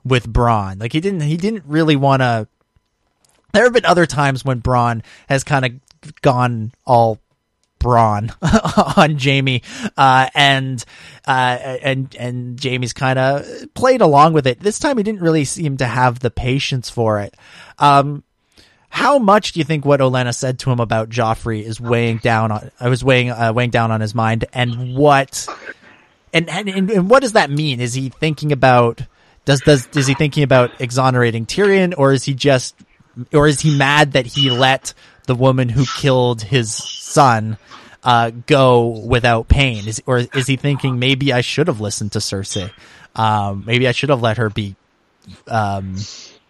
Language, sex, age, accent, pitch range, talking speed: English, male, 30-49, American, 115-145 Hz, 180 wpm